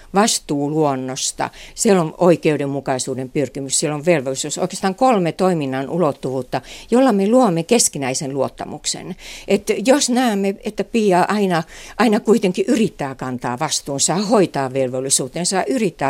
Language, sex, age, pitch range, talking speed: Finnish, female, 60-79, 140-190 Hz, 120 wpm